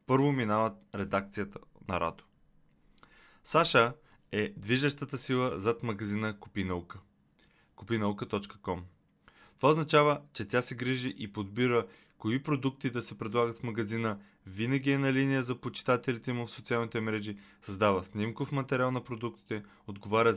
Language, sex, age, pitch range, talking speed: Bulgarian, male, 20-39, 100-125 Hz, 125 wpm